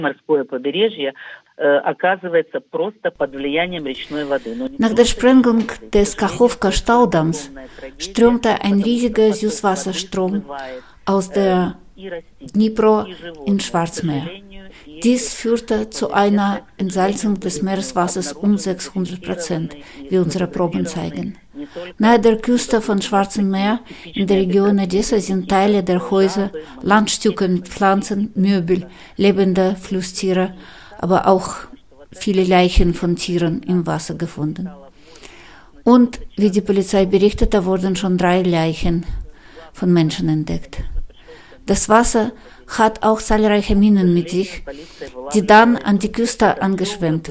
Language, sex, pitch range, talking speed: German, female, 175-215 Hz, 105 wpm